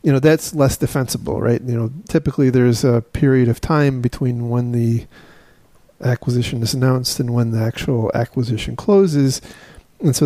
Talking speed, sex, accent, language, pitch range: 165 wpm, male, American, English, 120-145 Hz